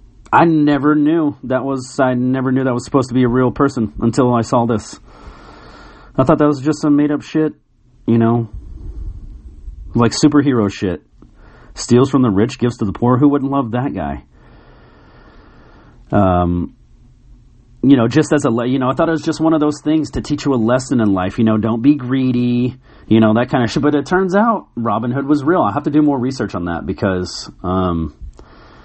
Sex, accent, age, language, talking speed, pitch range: male, American, 40-59, English, 210 wpm, 105-140 Hz